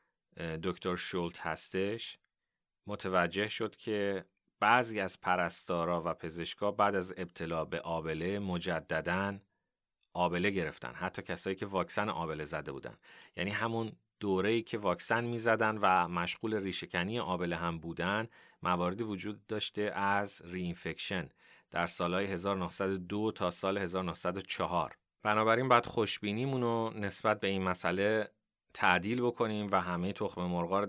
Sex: male